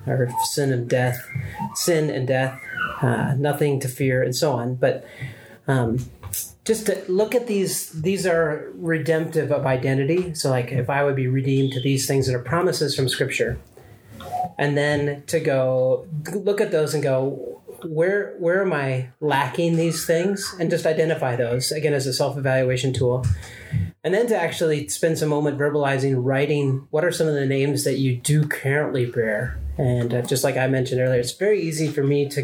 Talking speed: 185 wpm